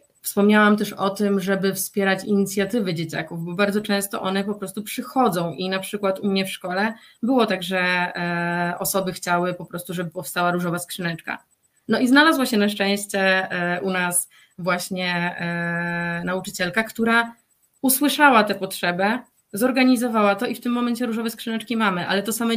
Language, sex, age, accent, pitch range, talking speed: Polish, female, 20-39, native, 185-215 Hz, 155 wpm